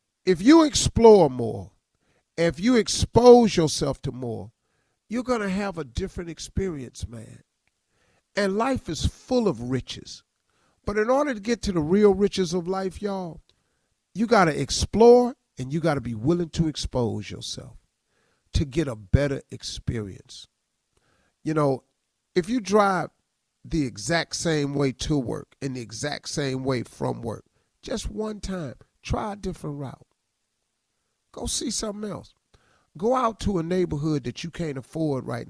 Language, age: English, 50-69